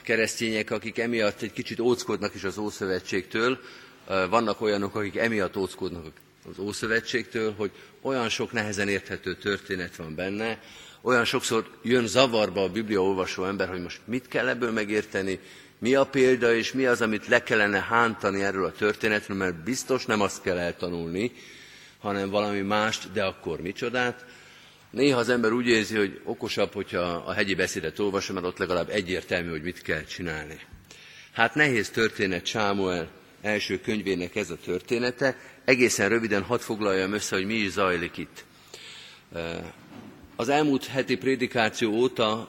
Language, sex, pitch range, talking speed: Hungarian, male, 95-115 Hz, 150 wpm